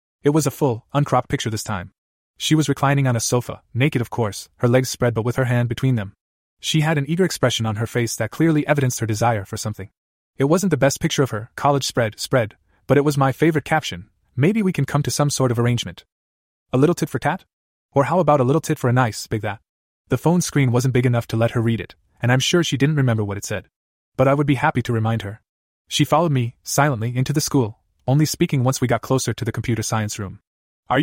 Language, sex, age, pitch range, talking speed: English, male, 20-39, 110-140 Hz, 250 wpm